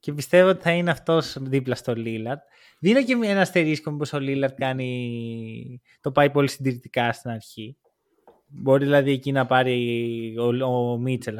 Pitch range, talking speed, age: 125-170 Hz, 165 wpm, 20-39